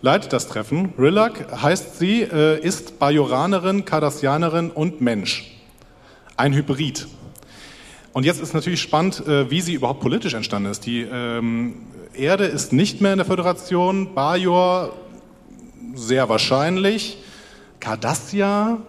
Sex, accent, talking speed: male, German, 115 wpm